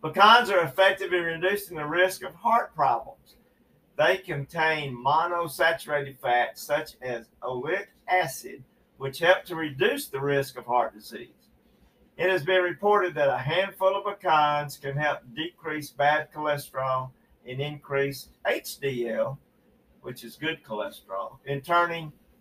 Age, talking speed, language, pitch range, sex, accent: 50-69, 135 wpm, English, 140-180 Hz, male, American